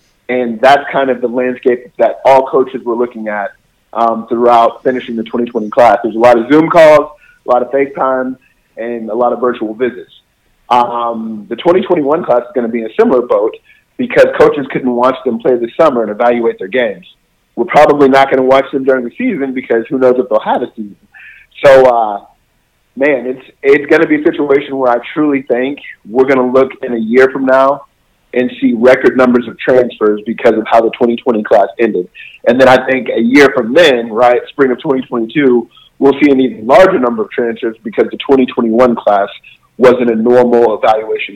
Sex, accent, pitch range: male, American, 120-140 Hz